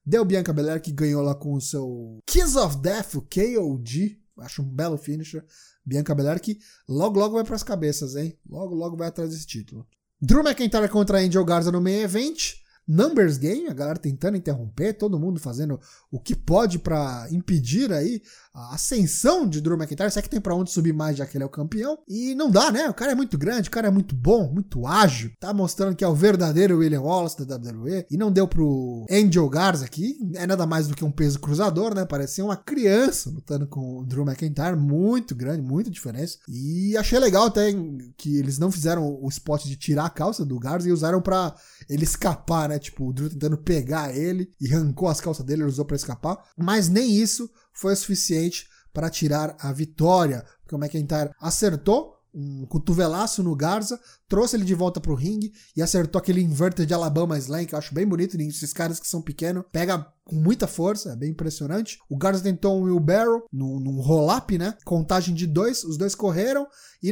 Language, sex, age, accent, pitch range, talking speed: Portuguese, male, 20-39, Brazilian, 150-195 Hz, 205 wpm